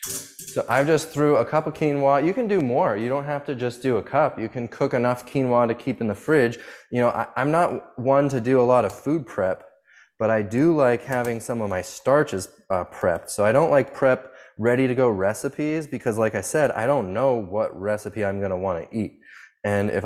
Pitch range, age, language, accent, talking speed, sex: 105-130 Hz, 20-39, English, American, 235 wpm, male